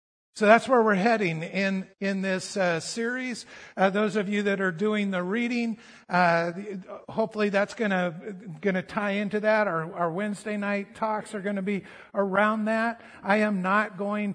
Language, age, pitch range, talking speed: English, 50-69, 185-215 Hz, 200 wpm